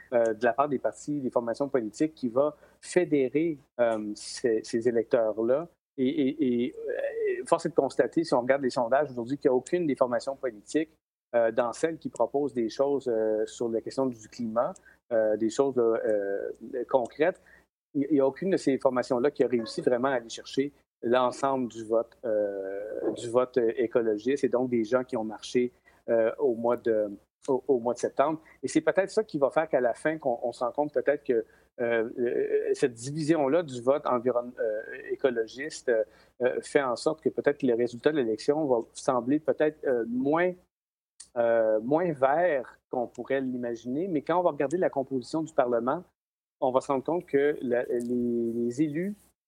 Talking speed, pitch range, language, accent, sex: 185 wpm, 115-150 Hz, French, Canadian, male